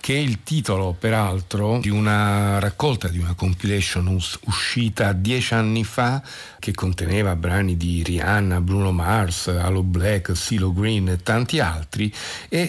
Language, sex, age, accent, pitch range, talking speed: Italian, male, 50-69, native, 90-110 Hz, 145 wpm